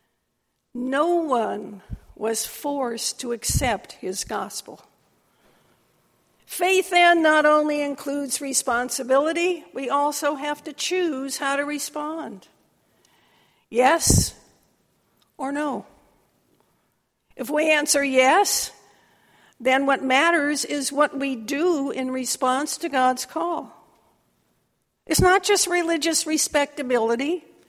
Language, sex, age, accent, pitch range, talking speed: English, female, 60-79, American, 240-320 Hz, 100 wpm